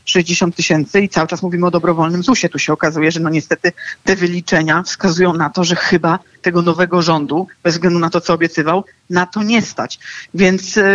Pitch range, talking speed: 165-195 Hz, 195 wpm